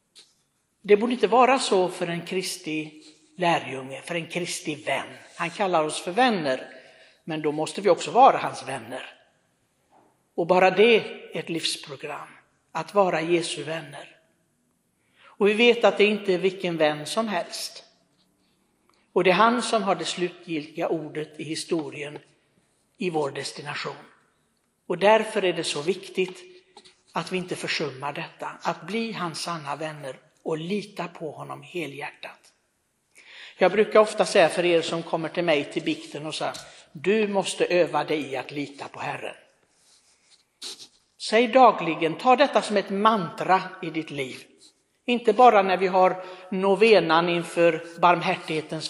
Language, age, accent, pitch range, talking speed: Swedish, 60-79, native, 160-205 Hz, 150 wpm